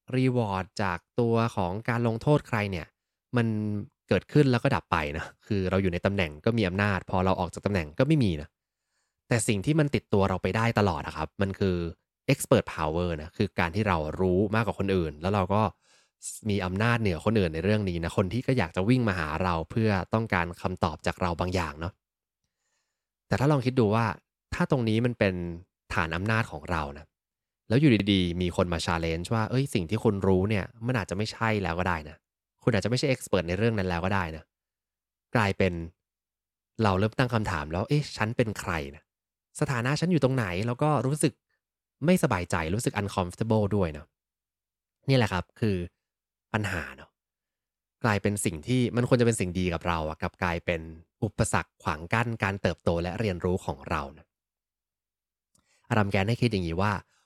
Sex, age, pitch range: male, 20-39, 90-115 Hz